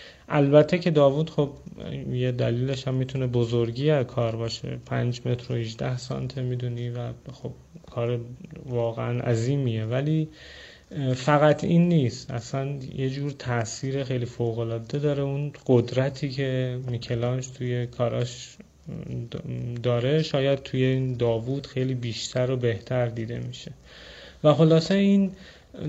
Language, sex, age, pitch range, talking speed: Persian, male, 30-49, 120-145 Hz, 120 wpm